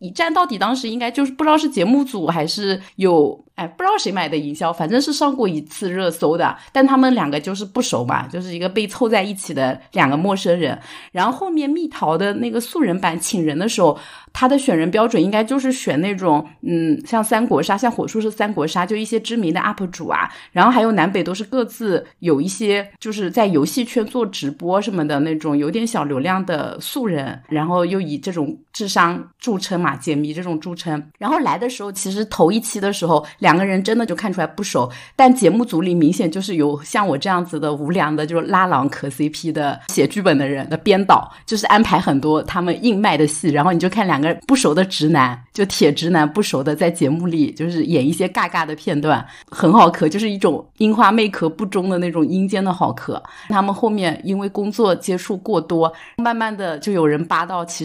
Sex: female